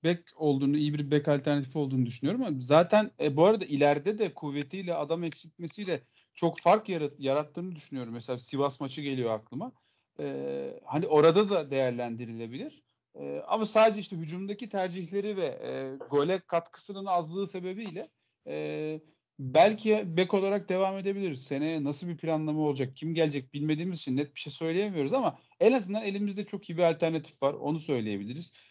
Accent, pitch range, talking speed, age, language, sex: native, 135-185 Hz, 155 wpm, 40-59, Turkish, male